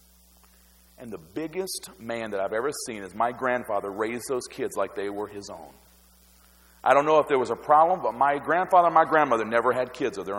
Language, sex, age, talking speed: English, male, 40-59, 220 wpm